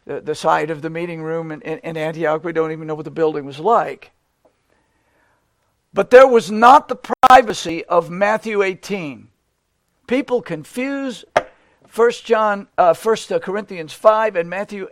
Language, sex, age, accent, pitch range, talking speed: English, male, 60-79, American, 170-255 Hz, 145 wpm